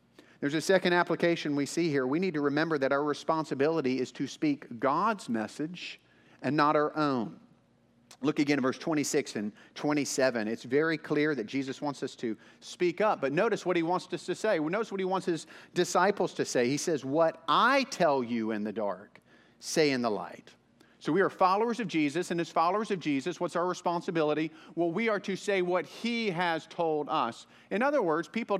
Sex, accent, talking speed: male, American, 205 wpm